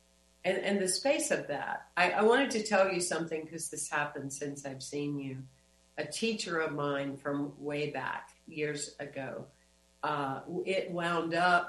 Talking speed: 170 wpm